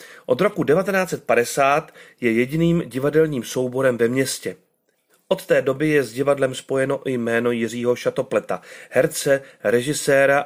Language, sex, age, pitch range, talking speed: Czech, male, 40-59, 125-160 Hz, 125 wpm